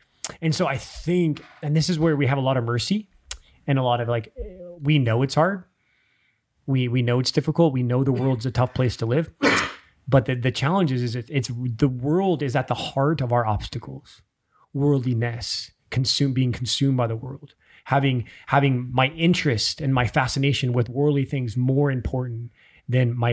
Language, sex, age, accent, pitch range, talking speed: English, male, 20-39, American, 125-155 Hz, 190 wpm